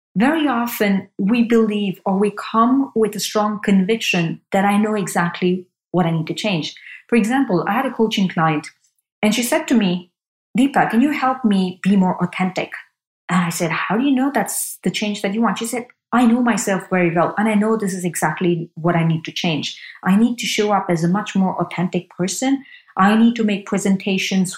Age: 30-49